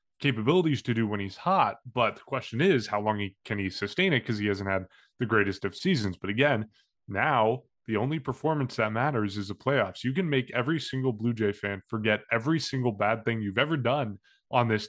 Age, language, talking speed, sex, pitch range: 20-39, English, 220 wpm, male, 100-125 Hz